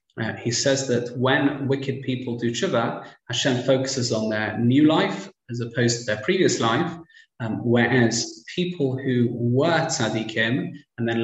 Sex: male